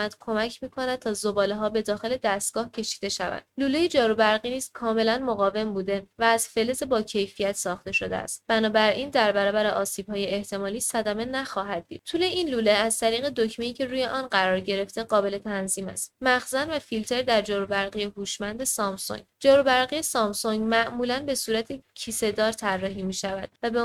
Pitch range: 205-250 Hz